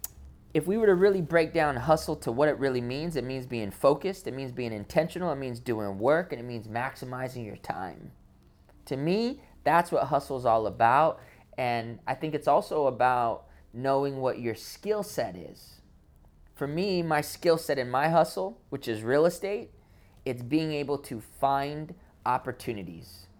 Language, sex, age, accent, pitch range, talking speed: English, male, 20-39, American, 115-155 Hz, 175 wpm